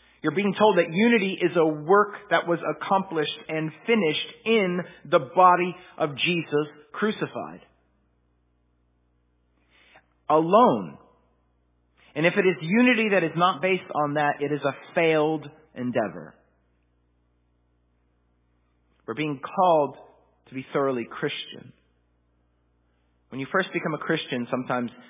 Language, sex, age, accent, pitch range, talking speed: English, male, 40-59, American, 110-155 Hz, 120 wpm